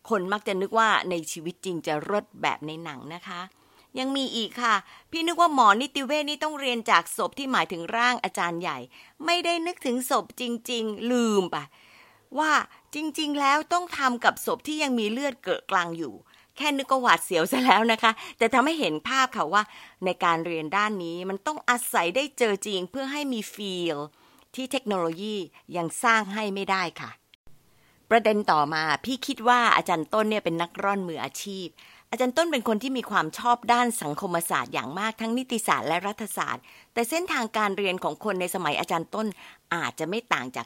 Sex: female